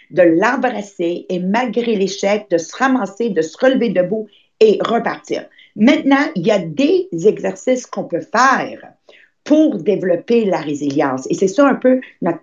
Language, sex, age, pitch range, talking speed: English, female, 50-69, 175-235 Hz, 160 wpm